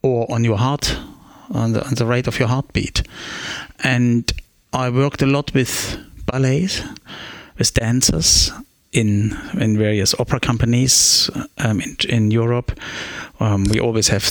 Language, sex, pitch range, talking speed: English, male, 105-135 Hz, 145 wpm